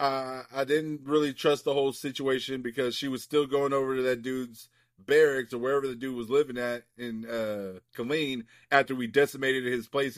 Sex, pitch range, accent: male, 130-170 Hz, American